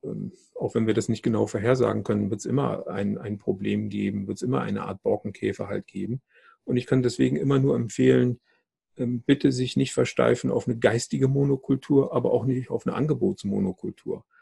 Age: 50-69